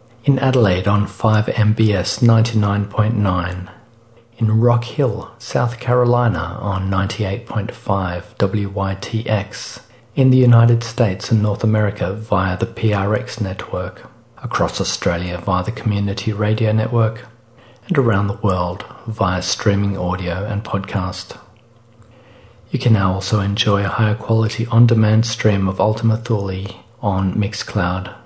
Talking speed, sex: 115 wpm, male